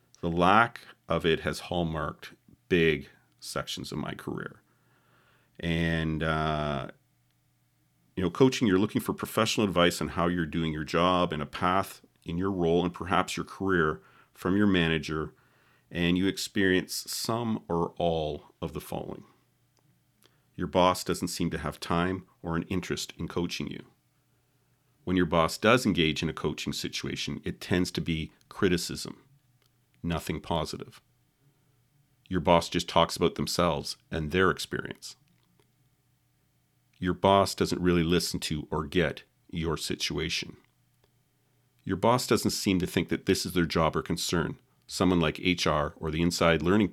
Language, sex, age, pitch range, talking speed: English, male, 40-59, 80-100 Hz, 150 wpm